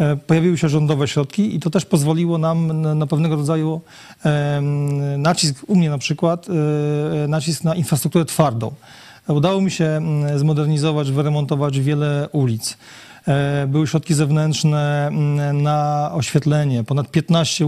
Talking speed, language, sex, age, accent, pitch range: 120 wpm, Polish, male, 40-59, native, 145-160 Hz